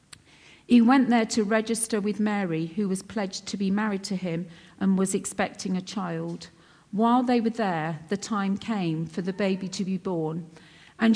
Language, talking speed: English, 185 wpm